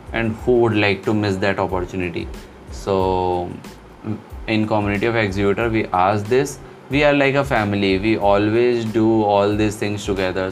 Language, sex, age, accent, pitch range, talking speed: Hindi, male, 20-39, native, 100-125 Hz, 160 wpm